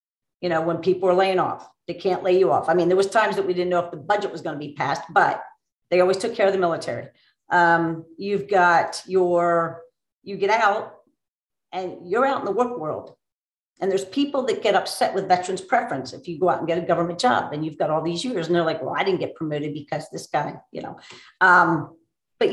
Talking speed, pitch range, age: 240 wpm, 175-205 Hz, 50-69